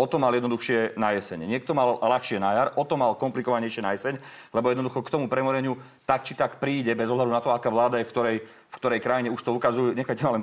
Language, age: Slovak, 30-49